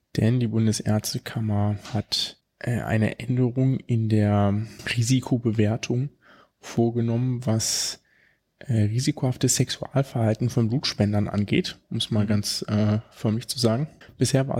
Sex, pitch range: male, 110-140 Hz